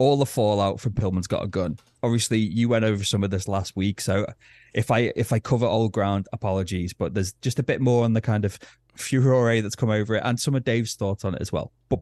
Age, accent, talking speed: 30-49, British, 255 wpm